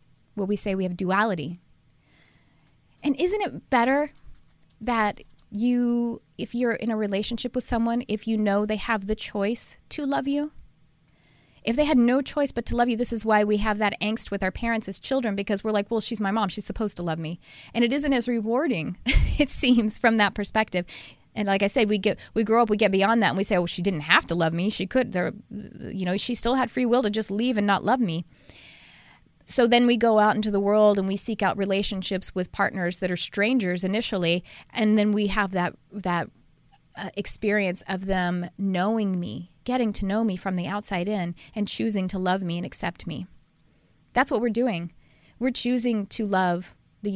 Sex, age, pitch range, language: female, 20-39, 190-235 Hz, English